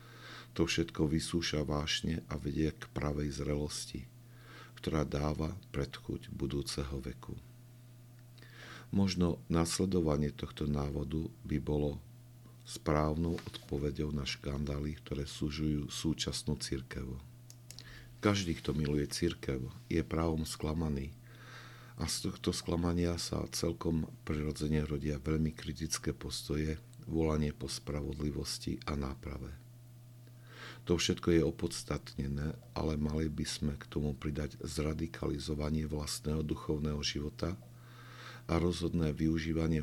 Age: 50-69